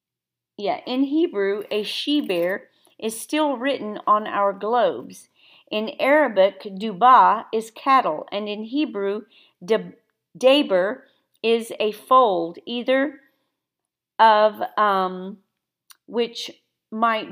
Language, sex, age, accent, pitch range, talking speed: English, female, 40-59, American, 190-245 Hz, 95 wpm